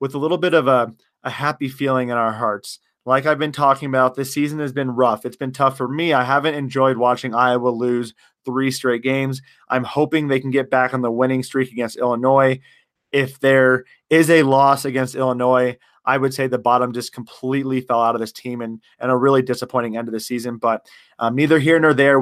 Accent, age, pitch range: American, 30-49, 125-150 Hz